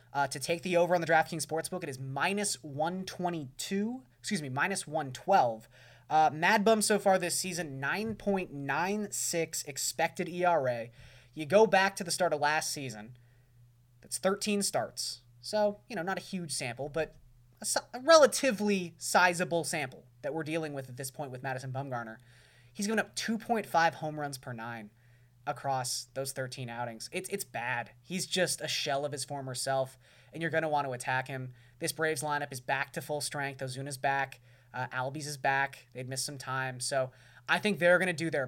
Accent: American